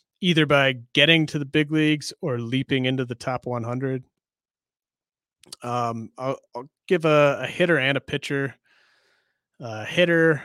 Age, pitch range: 30-49, 120-150 Hz